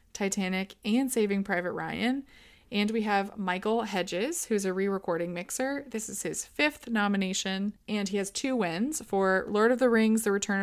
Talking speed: 180 wpm